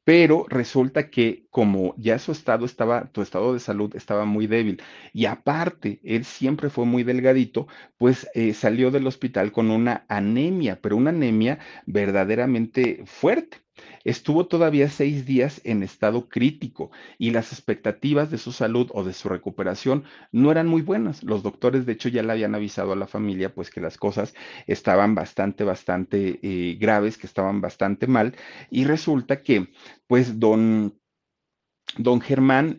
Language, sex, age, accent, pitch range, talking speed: Spanish, male, 40-59, Mexican, 105-130 Hz, 160 wpm